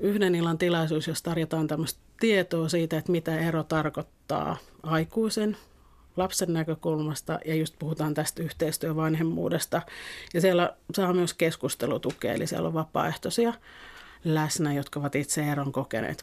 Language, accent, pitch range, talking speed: Finnish, native, 155-180 Hz, 125 wpm